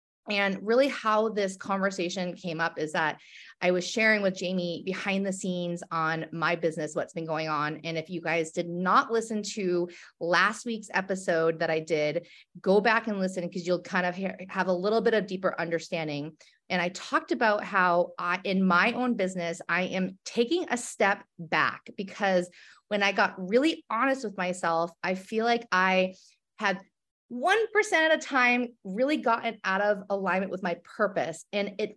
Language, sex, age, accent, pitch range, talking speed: English, female, 30-49, American, 175-220 Hz, 180 wpm